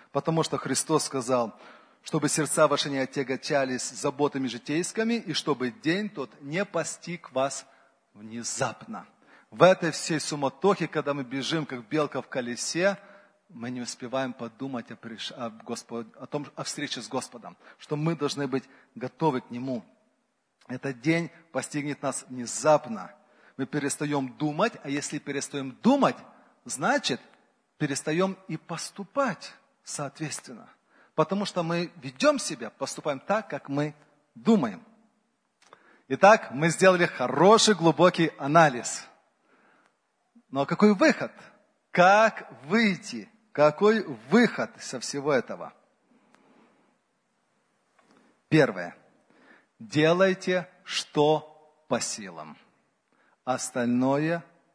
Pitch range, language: 135-185 Hz, Russian